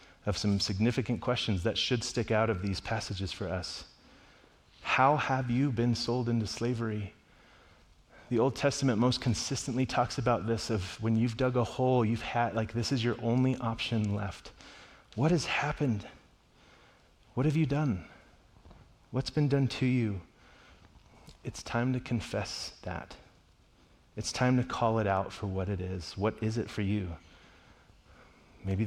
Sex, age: male, 30-49